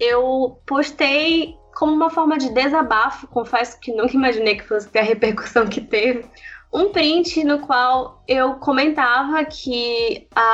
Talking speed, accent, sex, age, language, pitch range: 140 wpm, Brazilian, female, 10-29, Portuguese, 235-310 Hz